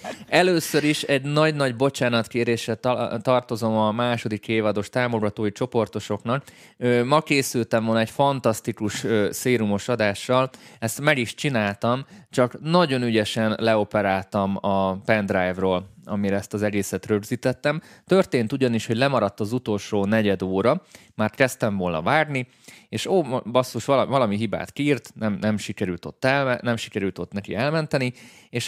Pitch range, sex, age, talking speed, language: 100-125 Hz, male, 20-39, 125 wpm, Hungarian